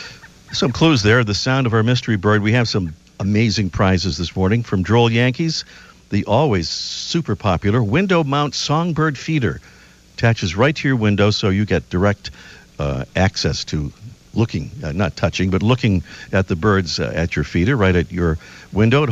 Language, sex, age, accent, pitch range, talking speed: English, male, 50-69, American, 95-125 Hz, 180 wpm